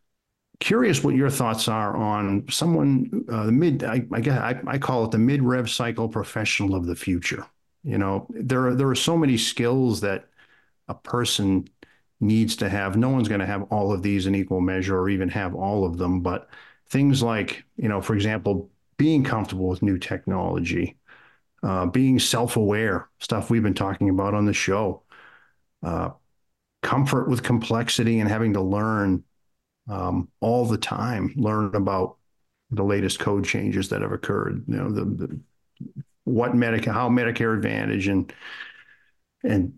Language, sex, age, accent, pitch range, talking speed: English, male, 50-69, American, 100-125 Hz, 170 wpm